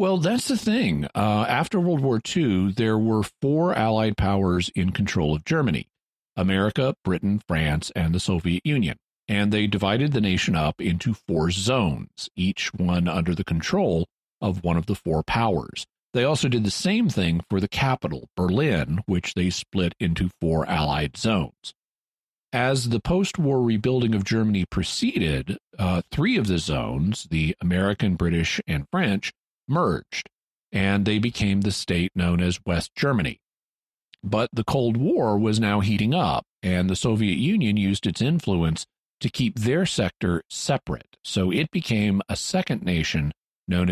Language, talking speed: English, 160 wpm